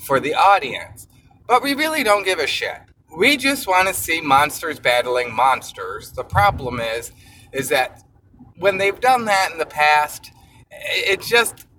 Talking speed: 165 wpm